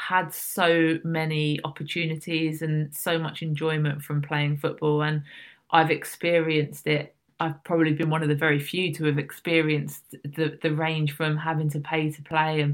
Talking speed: 170 wpm